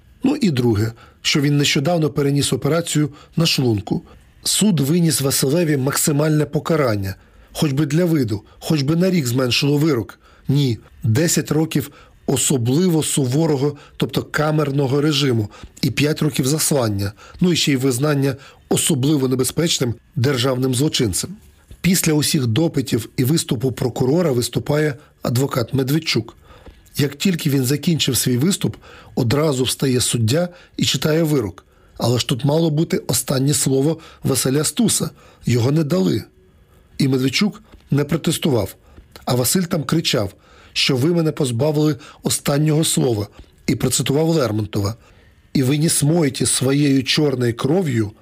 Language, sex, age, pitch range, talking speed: Ukrainian, male, 40-59, 125-160 Hz, 125 wpm